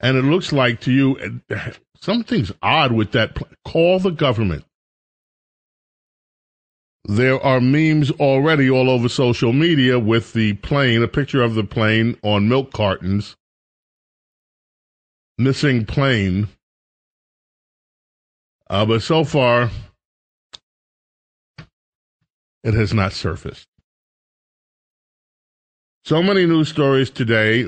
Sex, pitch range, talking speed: male, 100-125 Hz, 100 wpm